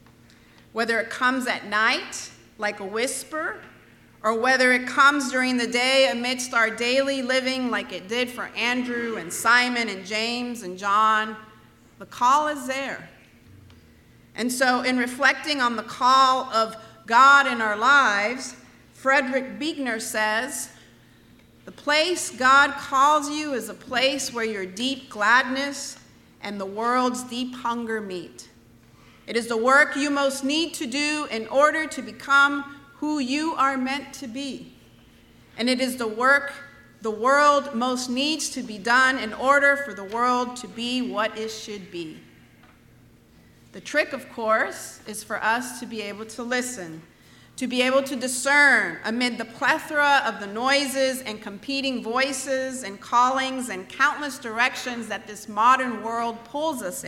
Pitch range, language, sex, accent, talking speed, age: 225-275 Hz, English, female, American, 155 wpm, 40-59